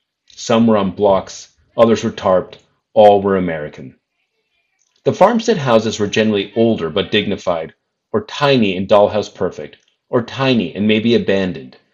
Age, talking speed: 40-59, 140 wpm